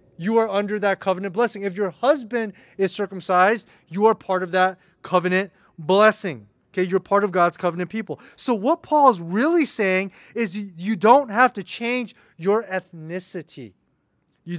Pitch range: 175-220 Hz